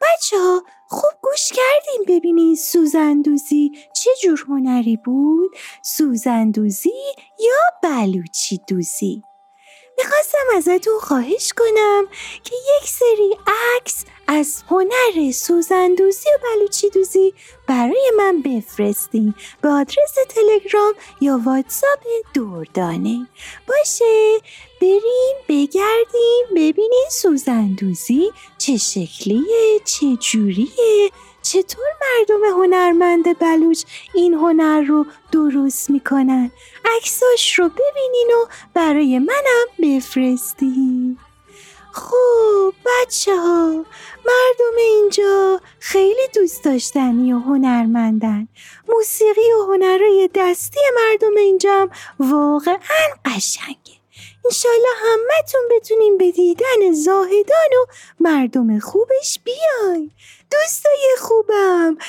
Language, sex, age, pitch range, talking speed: Persian, female, 30-49, 280-440 Hz, 90 wpm